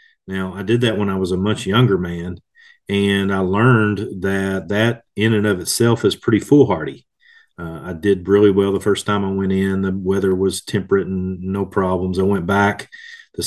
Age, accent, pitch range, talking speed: 40-59, American, 95-105 Hz, 200 wpm